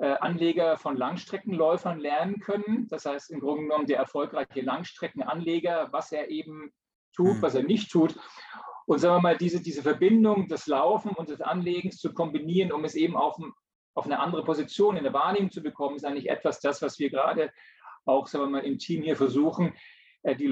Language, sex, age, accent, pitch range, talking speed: German, male, 40-59, German, 135-175 Hz, 185 wpm